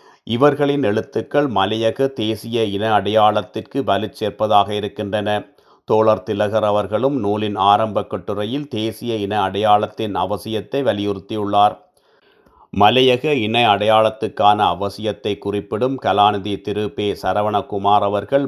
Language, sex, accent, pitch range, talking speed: Tamil, male, native, 100-110 Hz, 90 wpm